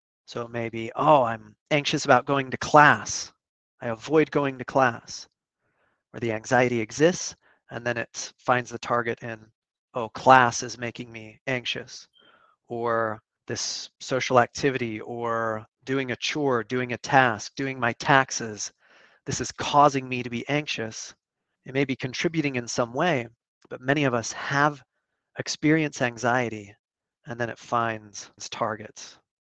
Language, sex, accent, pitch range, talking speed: English, male, American, 115-135 Hz, 150 wpm